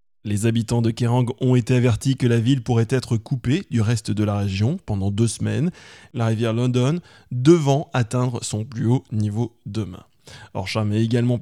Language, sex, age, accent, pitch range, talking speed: English, male, 20-39, French, 110-135 Hz, 180 wpm